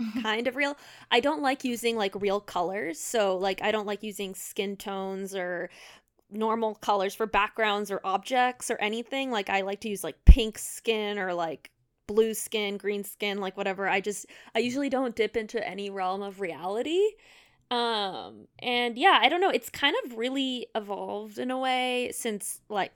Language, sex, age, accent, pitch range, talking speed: English, female, 20-39, American, 195-240 Hz, 185 wpm